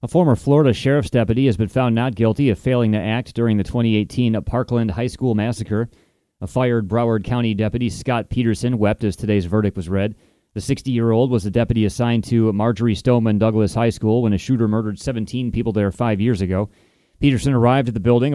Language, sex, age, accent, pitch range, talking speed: English, male, 30-49, American, 105-125 Hz, 200 wpm